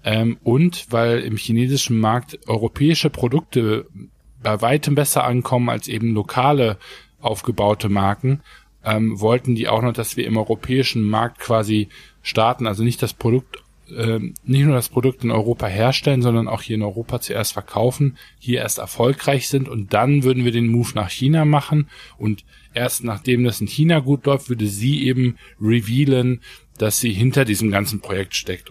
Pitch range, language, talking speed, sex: 105-125 Hz, German, 165 wpm, male